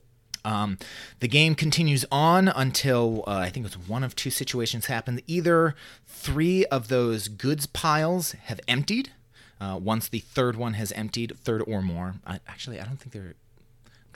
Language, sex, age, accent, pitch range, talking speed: English, male, 30-49, American, 100-130 Hz, 170 wpm